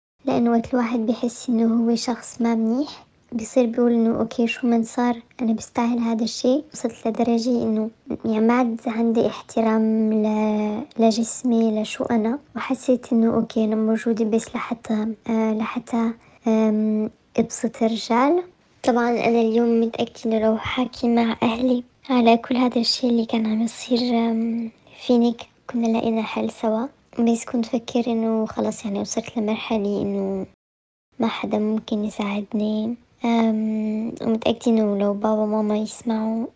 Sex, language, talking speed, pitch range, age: male, Arabic, 140 wpm, 220-235 Hz, 20-39